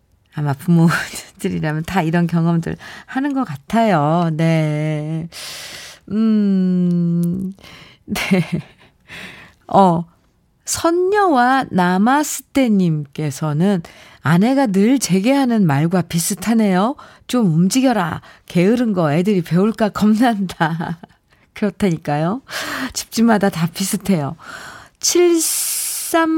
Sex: female